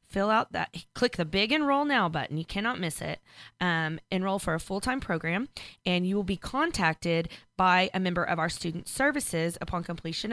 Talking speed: 200 wpm